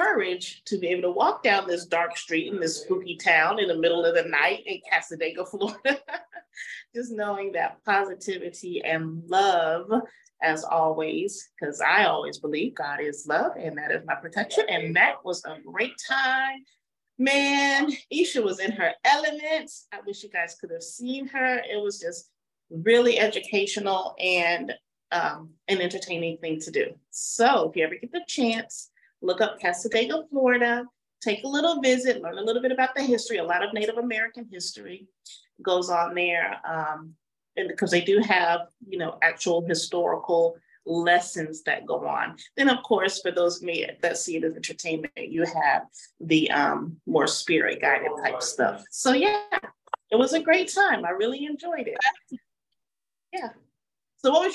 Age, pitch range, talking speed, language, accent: 30-49, 170-275 Hz, 170 wpm, English, American